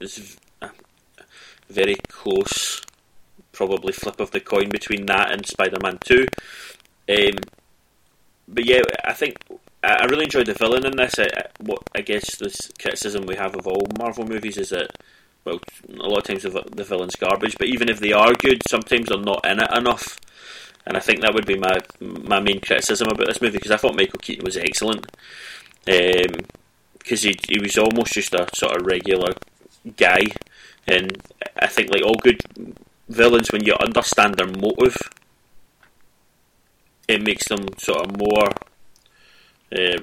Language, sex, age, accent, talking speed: English, male, 20-39, British, 170 wpm